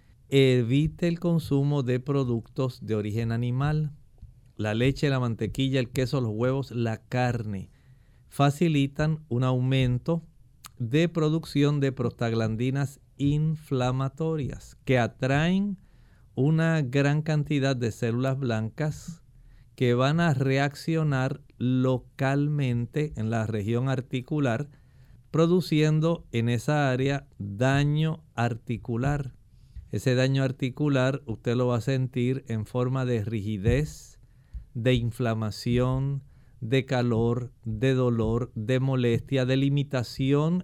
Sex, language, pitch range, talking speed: male, English, 120-145 Hz, 105 wpm